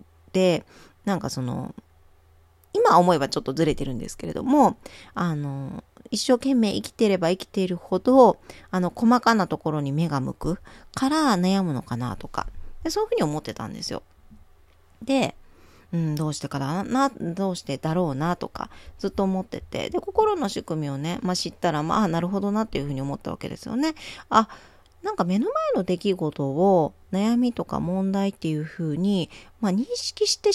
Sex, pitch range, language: female, 155-235 Hz, Japanese